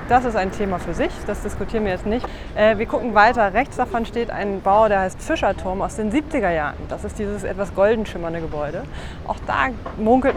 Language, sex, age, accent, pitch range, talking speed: German, female, 20-39, German, 190-225 Hz, 215 wpm